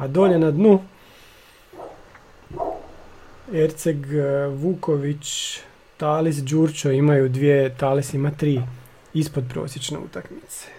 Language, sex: Croatian, male